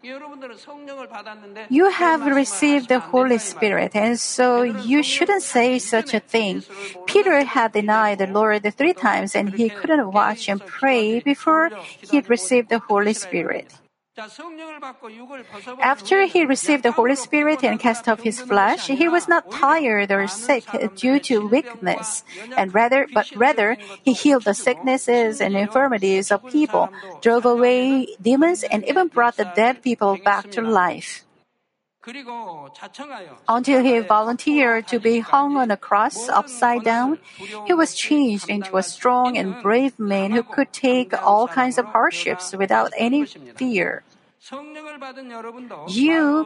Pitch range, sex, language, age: 215-275 Hz, female, Korean, 50-69